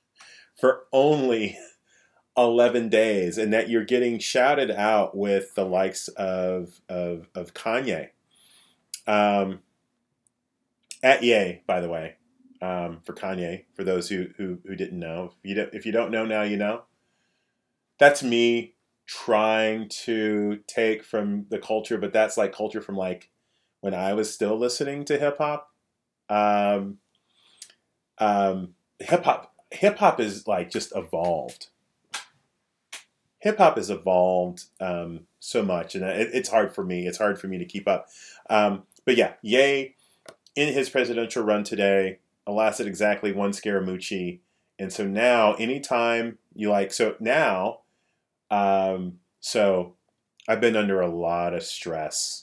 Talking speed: 145 wpm